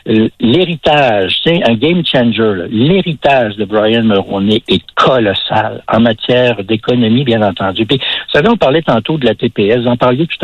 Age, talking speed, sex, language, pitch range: 60-79, 165 wpm, male, French, 120-170 Hz